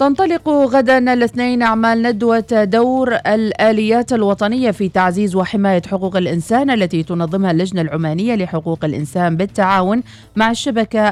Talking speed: 120 wpm